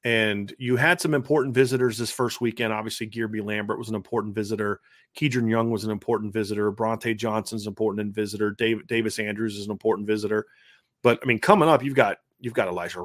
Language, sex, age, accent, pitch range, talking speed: English, male, 30-49, American, 110-130 Hz, 200 wpm